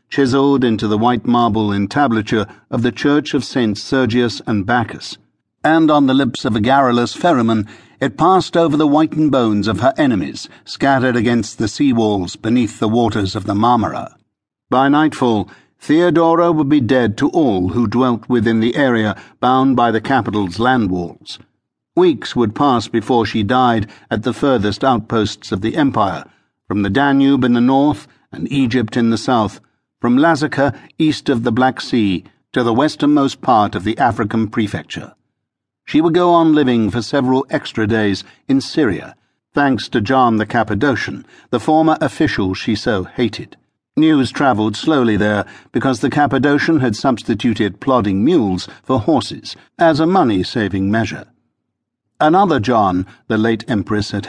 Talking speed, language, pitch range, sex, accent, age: 160 wpm, English, 110-140 Hz, male, British, 60-79